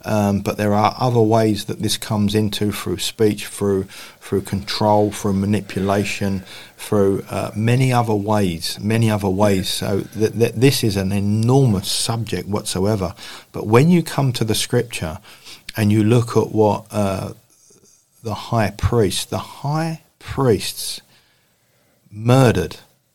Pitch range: 100-120 Hz